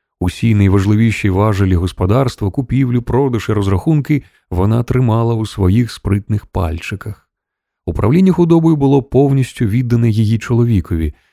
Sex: male